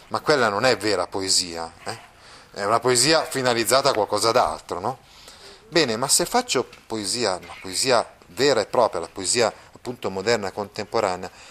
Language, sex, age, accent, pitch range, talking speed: Italian, male, 30-49, native, 120-180 Hz, 160 wpm